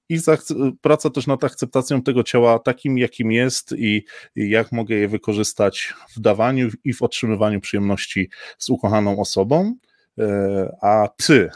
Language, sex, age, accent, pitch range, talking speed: Polish, male, 20-39, native, 105-125 Hz, 140 wpm